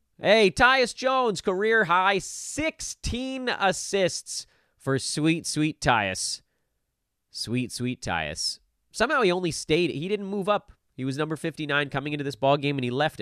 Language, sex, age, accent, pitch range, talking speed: English, male, 30-49, American, 110-155 Hz, 150 wpm